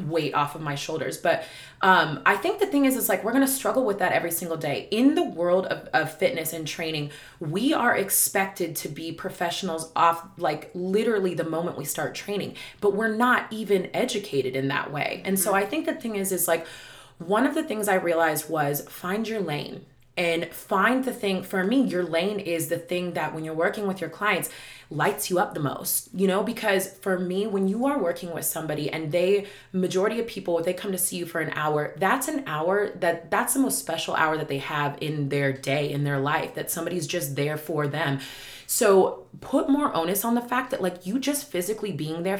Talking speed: 220 wpm